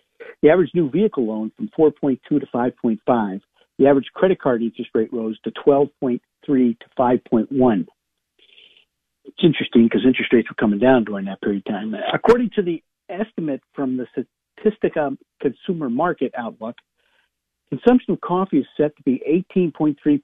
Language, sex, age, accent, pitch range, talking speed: English, male, 50-69, American, 115-160 Hz, 150 wpm